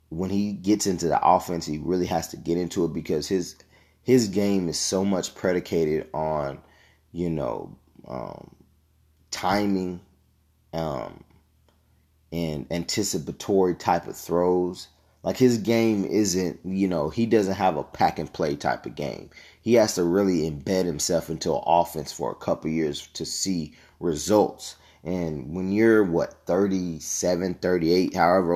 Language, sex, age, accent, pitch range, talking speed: English, male, 30-49, American, 80-95 Hz, 150 wpm